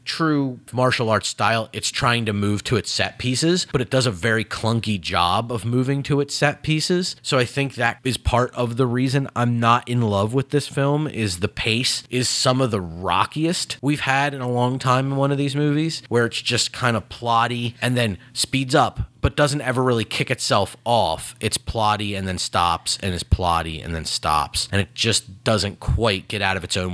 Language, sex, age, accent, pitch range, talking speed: English, male, 30-49, American, 105-135 Hz, 220 wpm